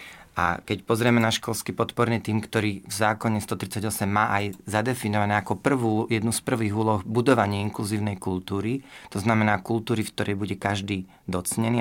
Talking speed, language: 160 wpm, Slovak